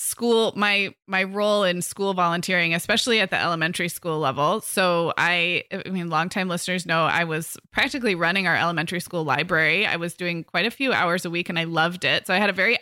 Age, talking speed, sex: 20-39, 215 wpm, female